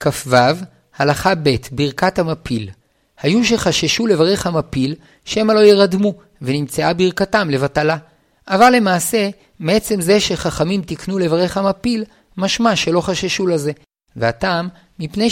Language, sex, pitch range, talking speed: Hebrew, male, 150-190 Hz, 115 wpm